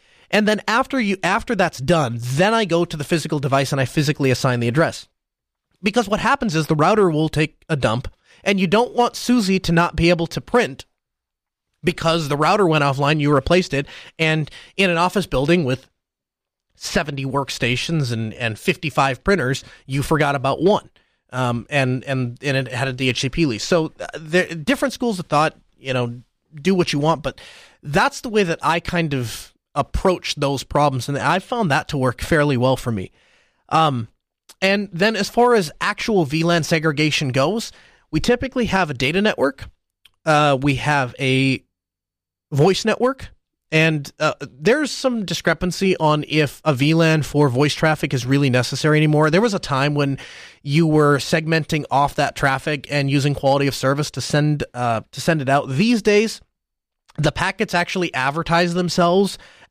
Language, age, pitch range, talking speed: English, 30-49, 135-180 Hz, 175 wpm